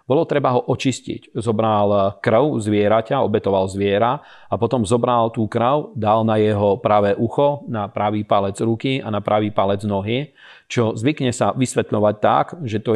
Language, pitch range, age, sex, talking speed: Slovak, 105-120 Hz, 40-59, male, 160 wpm